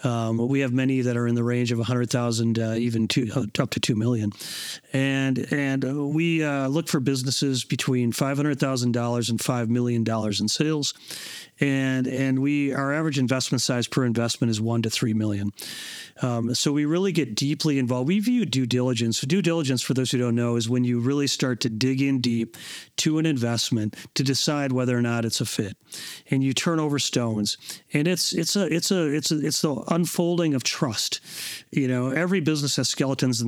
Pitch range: 120-150 Hz